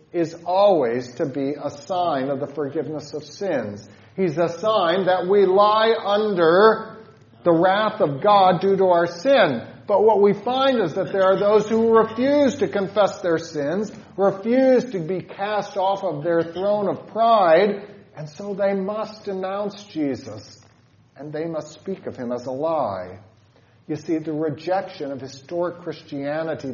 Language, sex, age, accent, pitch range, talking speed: English, male, 40-59, American, 135-195 Hz, 165 wpm